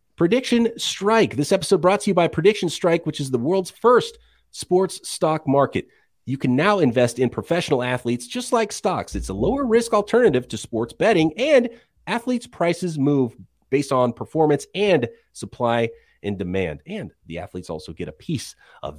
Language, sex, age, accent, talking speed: English, male, 30-49, American, 175 wpm